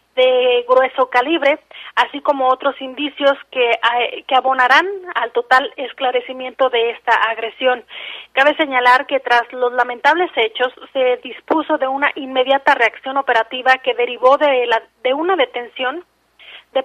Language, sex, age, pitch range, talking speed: Spanish, female, 30-49, 245-280 Hz, 135 wpm